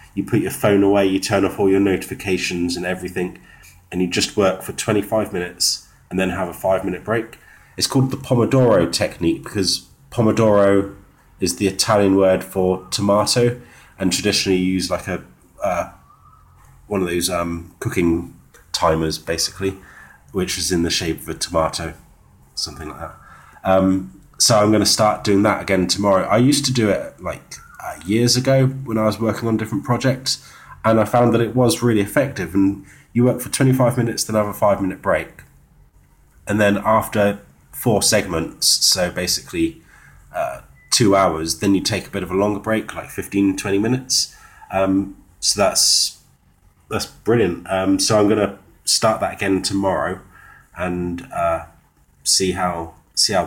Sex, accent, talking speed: male, British, 170 wpm